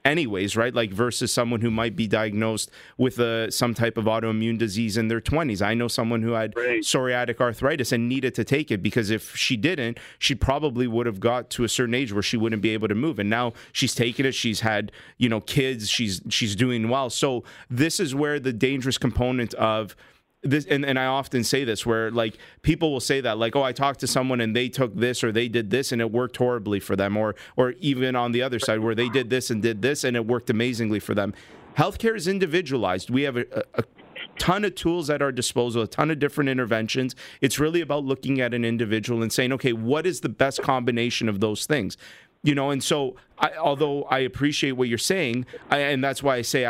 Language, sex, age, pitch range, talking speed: English, male, 30-49, 115-135 Hz, 225 wpm